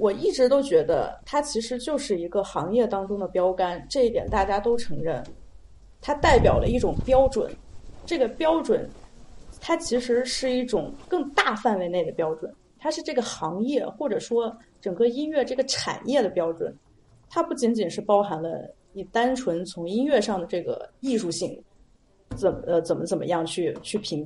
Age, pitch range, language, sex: 30-49, 190-285 Hz, Chinese, female